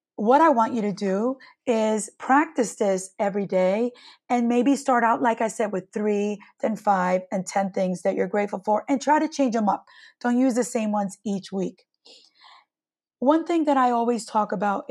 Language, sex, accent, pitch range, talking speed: English, female, American, 205-260 Hz, 195 wpm